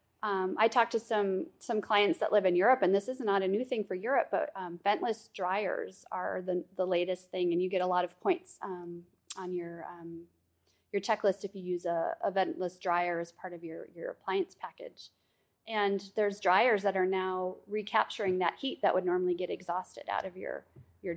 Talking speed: 210 wpm